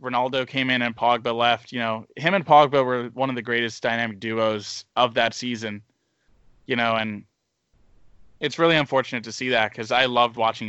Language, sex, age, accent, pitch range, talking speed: English, male, 20-39, American, 115-140 Hz, 190 wpm